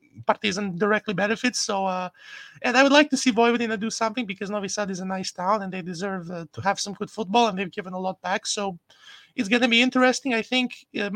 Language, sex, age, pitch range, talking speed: English, male, 20-39, 200-240 Hz, 240 wpm